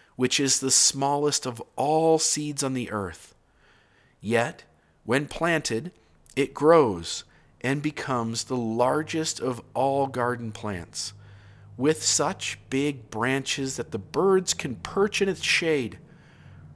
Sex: male